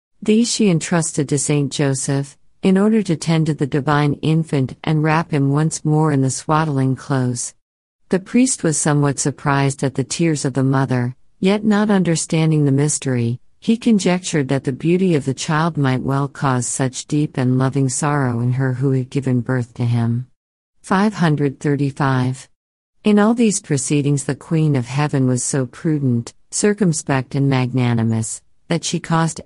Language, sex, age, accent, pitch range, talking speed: English, female, 50-69, American, 130-165 Hz, 165 wpm